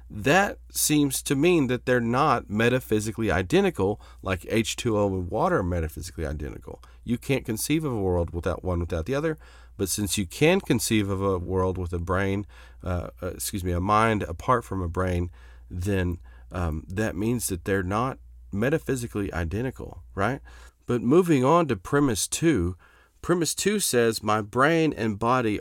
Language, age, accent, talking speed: English, 40-59, American, 165 wpm